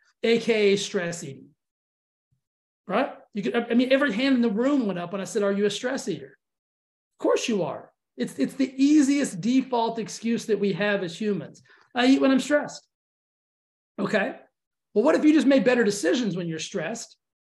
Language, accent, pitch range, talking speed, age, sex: English, American, 195-250 Hz, 190 wpm, 40-59, male